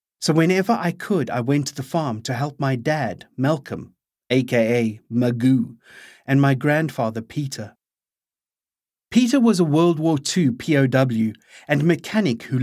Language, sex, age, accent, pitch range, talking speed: English, male, 30-49, British, 125-165 Hz, 145 wpm